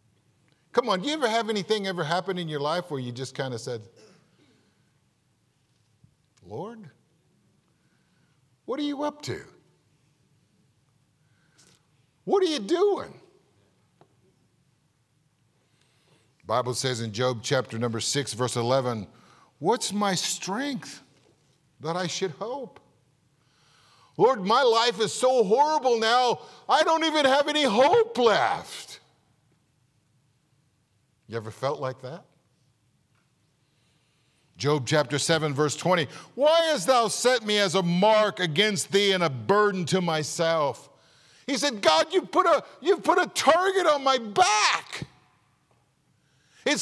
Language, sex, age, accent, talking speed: English, male, 50-69, American, 120 wpm